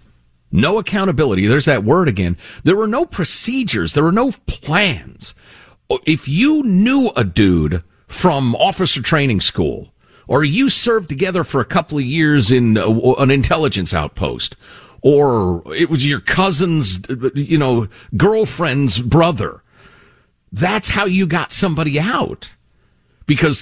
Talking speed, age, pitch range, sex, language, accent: 135 wpm, 50-69, 100-160 Hz, male, English, American